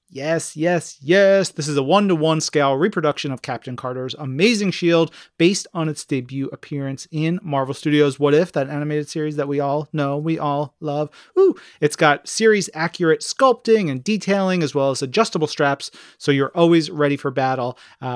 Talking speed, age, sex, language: 170 wpm, 30-49, male, English